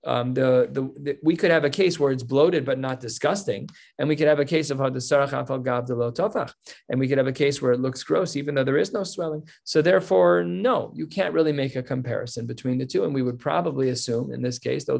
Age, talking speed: 30-49, 240 wpm